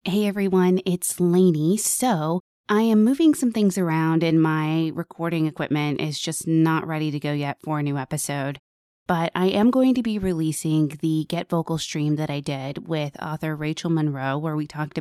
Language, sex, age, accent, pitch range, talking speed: English, female, 20-39, American, 155-185 Hz, 190 wpm